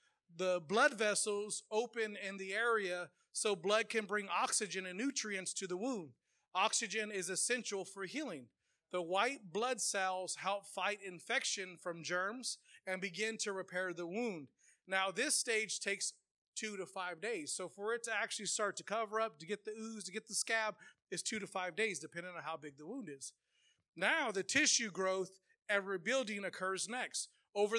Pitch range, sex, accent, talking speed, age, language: 190-230 Hz, male, American, 180 wpm, 30-49, English